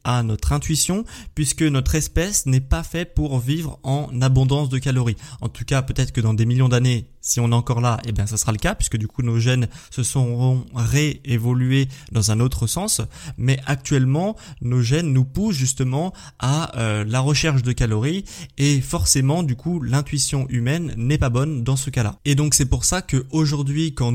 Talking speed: 200 wpm